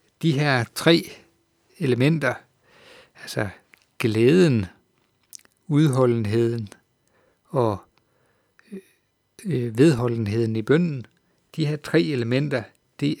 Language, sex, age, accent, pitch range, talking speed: Danish, male, 60-79, native, 110-150 Hz, 75 wpm